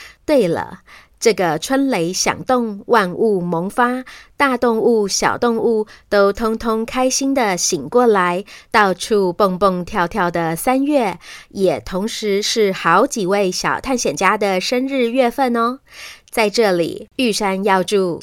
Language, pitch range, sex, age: Chinese, 190-250 Hz, female, 30-49